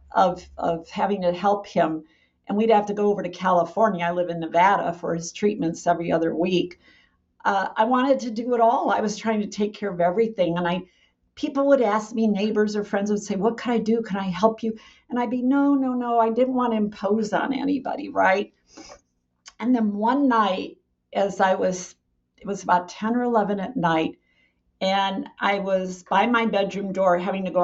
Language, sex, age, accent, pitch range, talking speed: English, female, 50-69, American, 185-240 Hz, 210 wpm